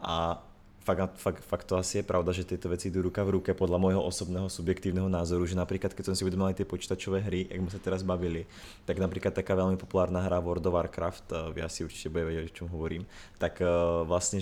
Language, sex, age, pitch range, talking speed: Czech, male, 20-39, 85-95 Hz, 210 wpm